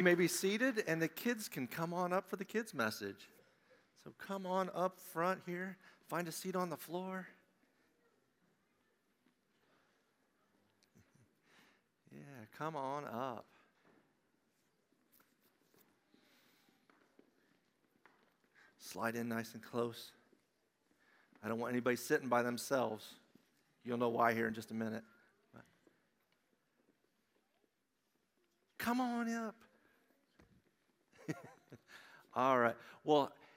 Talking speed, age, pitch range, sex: 100 wpm, 50-69, 115-160 Hz, male